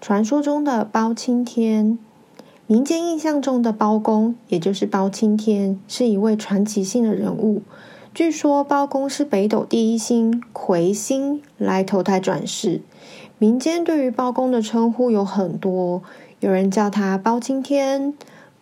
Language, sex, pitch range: Chinese, female, 200-250 Hz